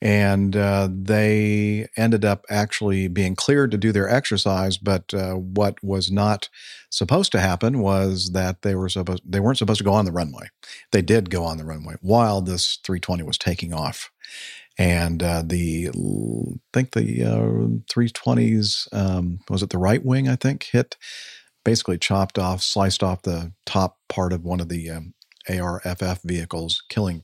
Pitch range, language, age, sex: 90-105 Hz, English, 50-69, male